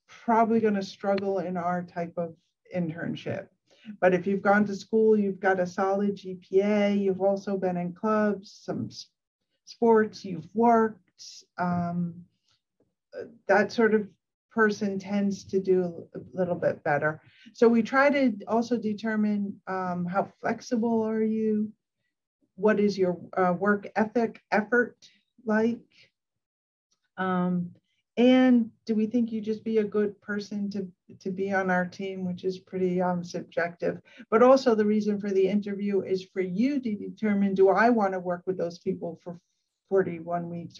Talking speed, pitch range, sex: 155 wpm, 185-220 Hz, female